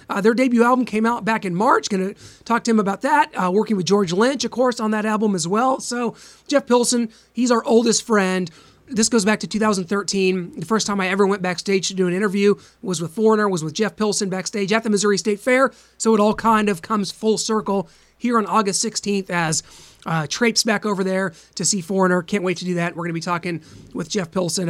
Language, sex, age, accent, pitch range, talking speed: English, male, 30-49, American, 185-220 Hz, 235 wpm